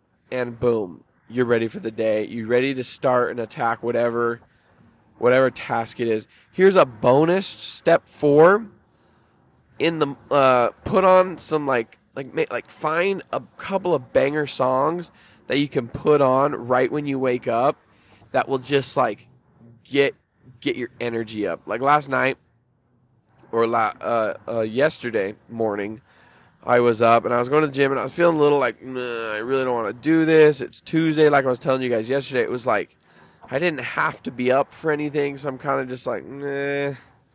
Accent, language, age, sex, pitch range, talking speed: American, English, 20-39, male, 120-145 Hz, 190 wpm